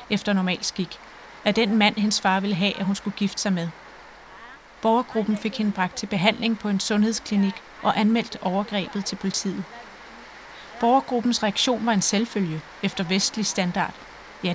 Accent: native